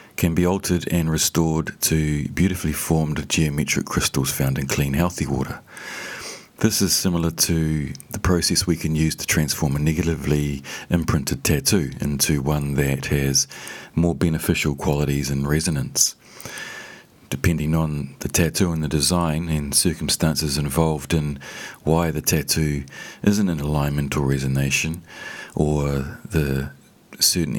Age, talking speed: 40-59, 135 wpm